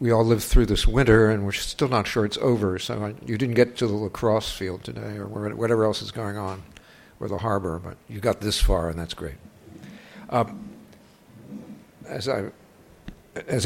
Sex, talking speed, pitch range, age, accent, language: male, 185 wpm, 90-115 Hz, 60-79, American, English